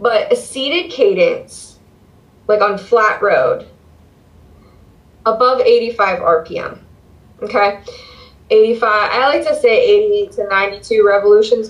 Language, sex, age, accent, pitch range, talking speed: English, female, 10-29, American, 190-300 Hz, 110 wpm